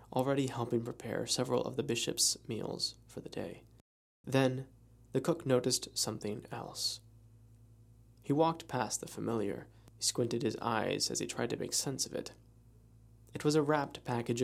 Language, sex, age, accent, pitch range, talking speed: English, male, 20-39, American, 115-130 Hz, 160 wpm